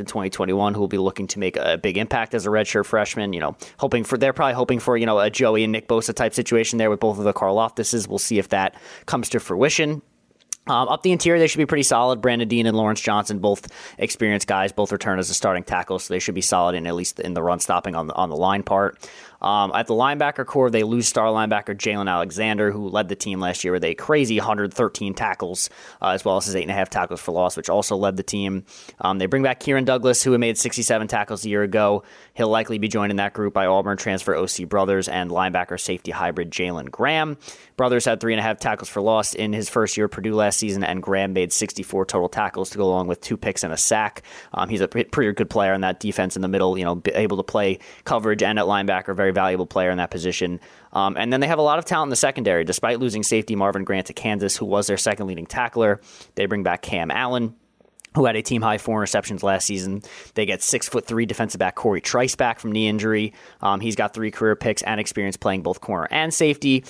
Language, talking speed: English, 250 wpm